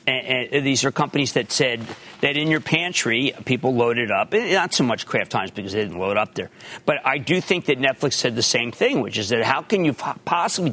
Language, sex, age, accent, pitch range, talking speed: English, male, 50-69, American, 130-210 Hz, 230 wpm